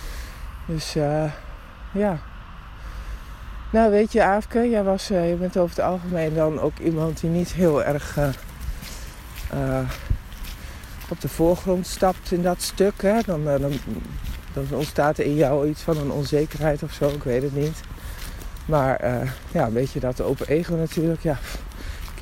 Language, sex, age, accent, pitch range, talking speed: Dutch, male, 50-69, Dutch, 100-165 Hz, 165 wpm